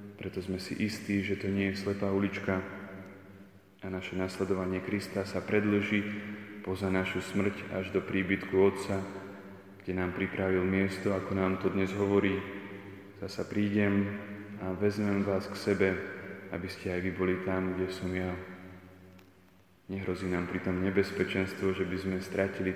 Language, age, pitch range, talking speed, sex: Slovak, 20-39, 95-100 Hz, 150 wpm, male